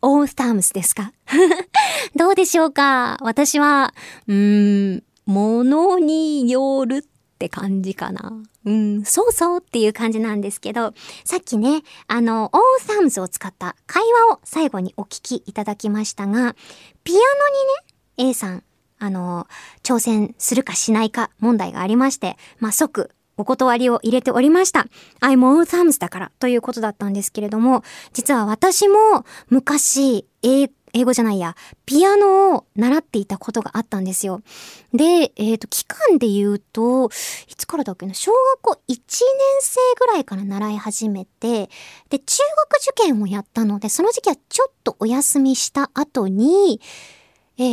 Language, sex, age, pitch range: Japanese, male, 20-39, 215-310 Hz